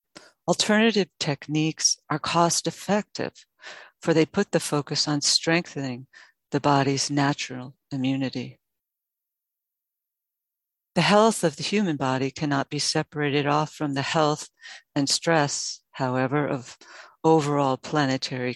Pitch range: 135-160 Hz